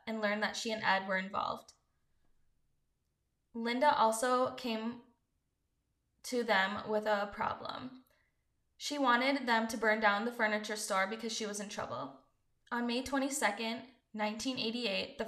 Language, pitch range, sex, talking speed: English, 205-245 Hz, female, 140 wpm